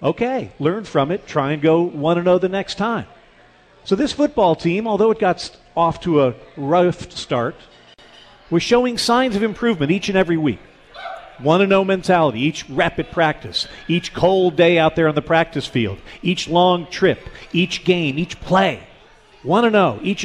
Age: 50-69